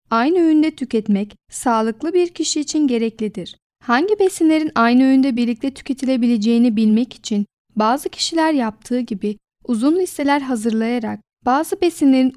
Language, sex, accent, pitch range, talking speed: Turkish, female, native, 230-300 Hz, 120 wpm